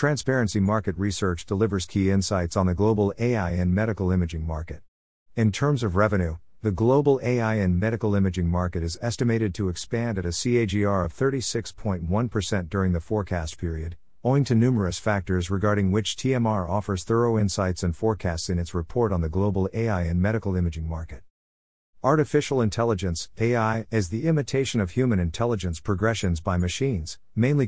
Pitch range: 90-115 Hz